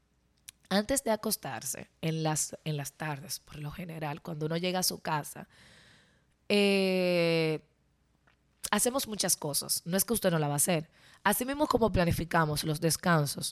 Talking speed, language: 160 wpm, Spanish